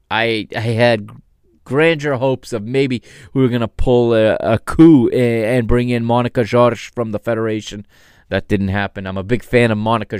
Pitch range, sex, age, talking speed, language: 100-120 Hz, male, 20-39, 190 wpm, English